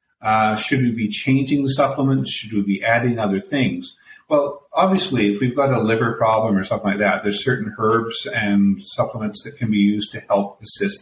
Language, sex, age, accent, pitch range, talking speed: English, male, 50-69, American, 110-145 Hz, 200 wpm